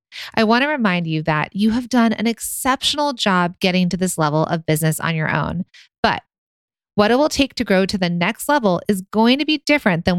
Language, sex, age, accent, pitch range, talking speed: English, female, 30-49, American, 170-225 Hz, 225 wpm